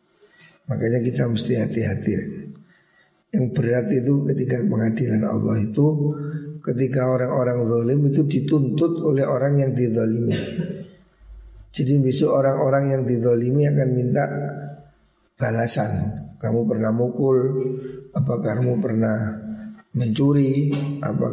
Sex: male